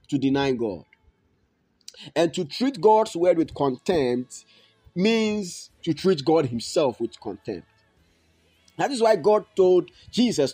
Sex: male